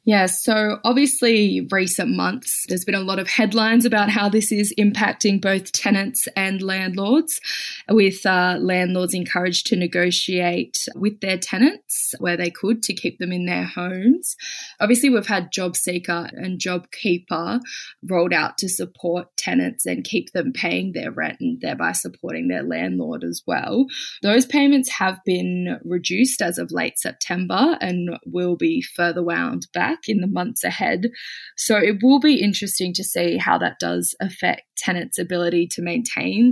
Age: 20-39